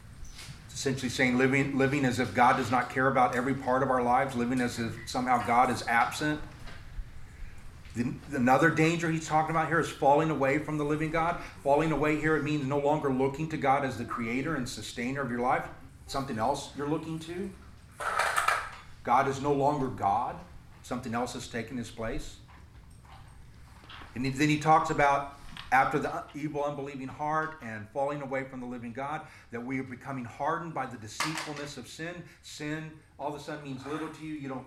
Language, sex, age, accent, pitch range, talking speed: English, male, 40-59, American, 125-150 Hz, 185 wpm